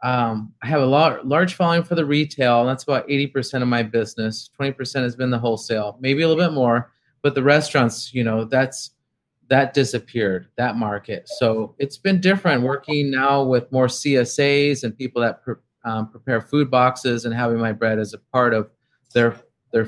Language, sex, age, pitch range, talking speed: English, male, 30-49, 115-140 Hz, 195 wpm